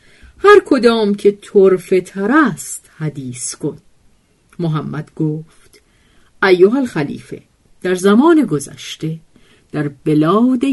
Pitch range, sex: 155-235 Hz, female